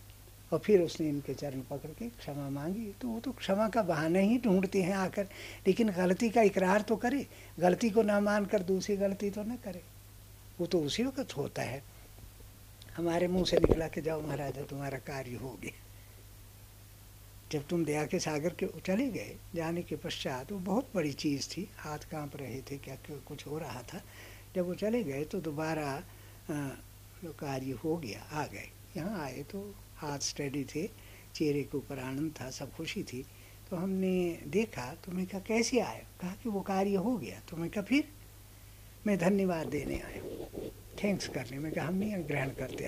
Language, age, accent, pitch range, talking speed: Hindi, 60-79, native, 115-195 Hz, 185 wpm